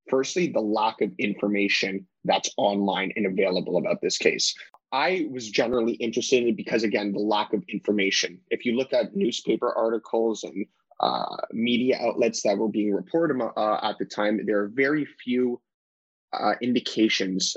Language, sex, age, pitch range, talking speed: English, male, 20-39, 100-125 Hz, 165 wpm